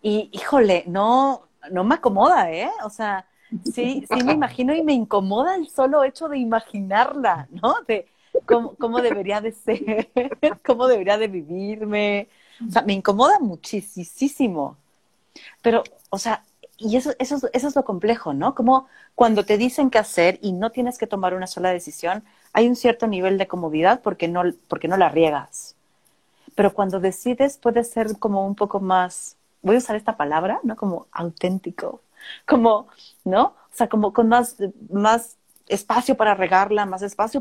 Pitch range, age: 195-245 Hz, 40-59